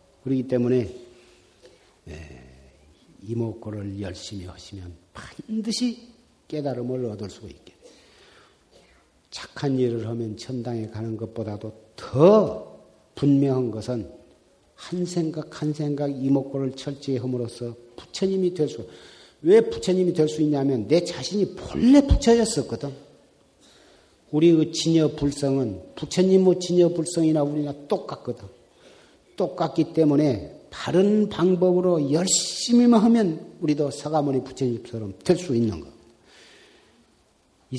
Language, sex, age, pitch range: Korean, male, 50-69, 115-165 Hz